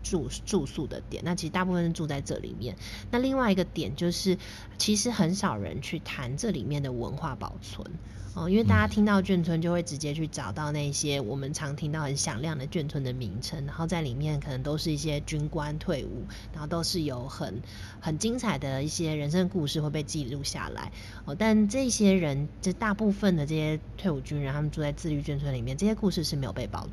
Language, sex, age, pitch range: Chinese, female, 30-49, 135-180 Hz